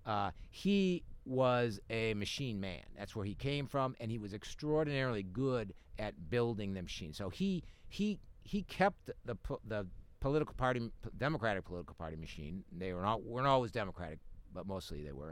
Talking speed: 170 wpm